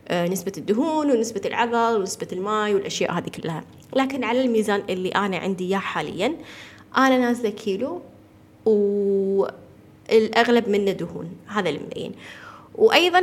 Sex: female